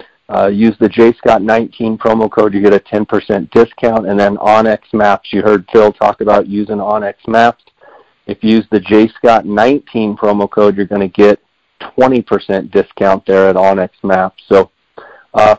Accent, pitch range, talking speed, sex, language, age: American, 105-115 Hz, 175 wpm, male, English, 50-69